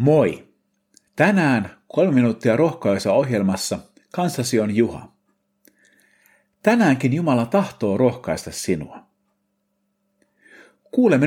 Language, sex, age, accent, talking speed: Finnish, male, 50-69, native, 80 wpm